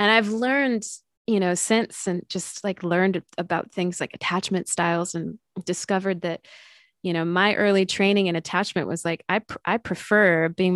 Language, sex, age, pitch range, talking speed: English, female, 20-39, 170-200 Hz, 180 wpm